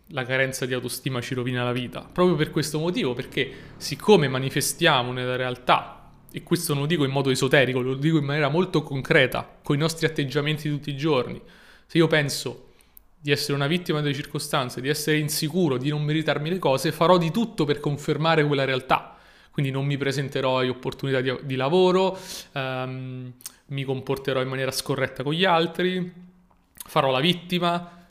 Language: Italian